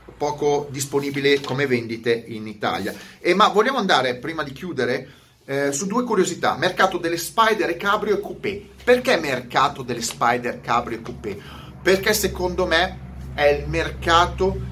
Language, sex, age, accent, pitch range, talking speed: Italian, male, 30-49, native, 125-180 Hz, 145 wpm